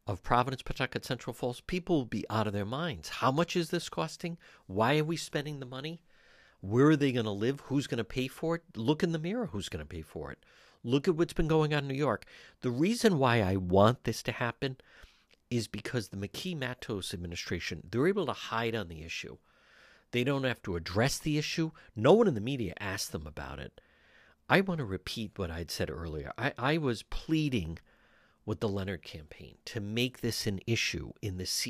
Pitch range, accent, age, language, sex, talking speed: 100-145 Hz, American, 50-69, English, male, 220 wpm